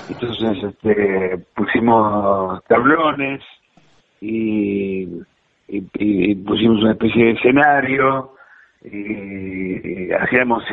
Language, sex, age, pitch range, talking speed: Spanish, male, 60-79, 100-120 Hz, 85 wpm